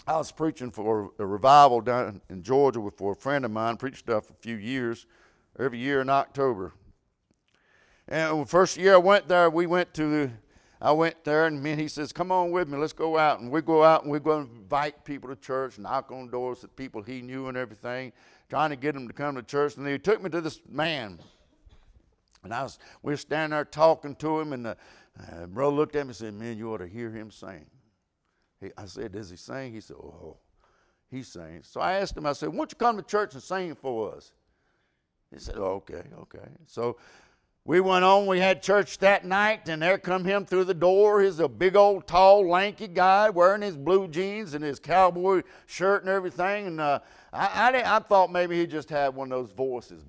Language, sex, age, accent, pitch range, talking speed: English, male, 60-79, American, 125-185 Hz, 220 wpm